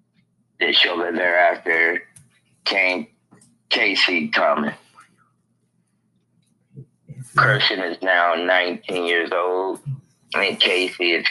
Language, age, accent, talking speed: English, 30-49, American, 80 wpm